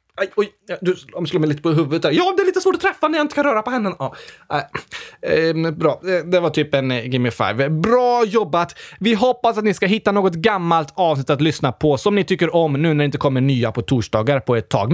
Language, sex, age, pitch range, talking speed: Swedish, male, 20-39, 165-280 Hz, 265 wpm